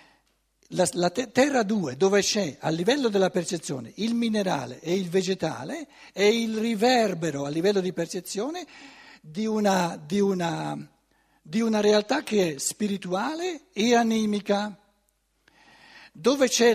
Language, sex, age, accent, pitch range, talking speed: Italian, male, 60-79, native, 155-220 Hz, 115 wpm